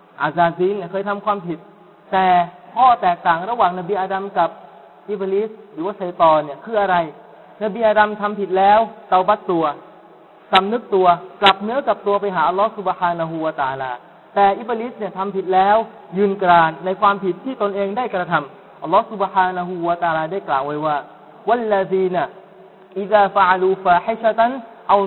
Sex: male